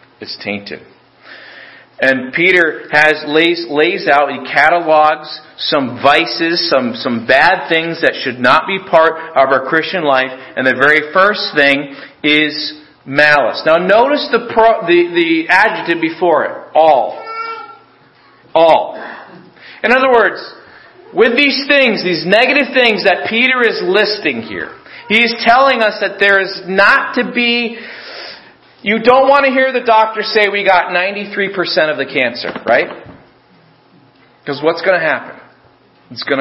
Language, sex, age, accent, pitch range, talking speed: English, male, 40-59, American, 150-225 Hz, 145 wpm